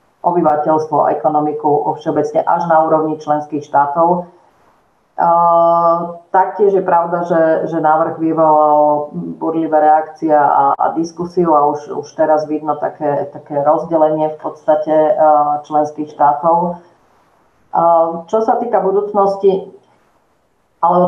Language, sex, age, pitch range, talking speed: Slovak, female, 40-59, 150-175 Hz, 110 wpm